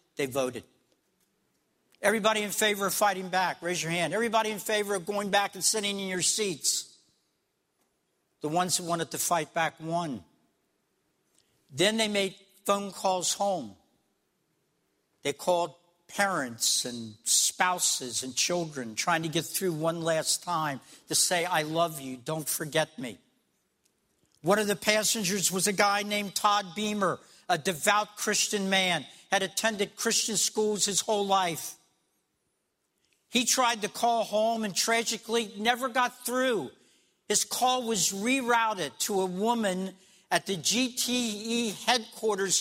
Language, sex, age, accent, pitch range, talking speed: English, male, 60-79, American, 175-215 Hz, 140 wpm